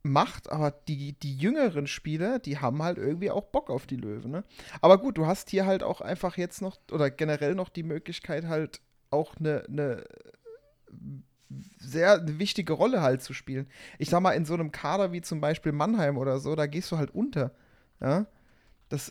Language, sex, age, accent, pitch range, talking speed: German, male, 30-49, German, 140-175 Hz, 190 wpm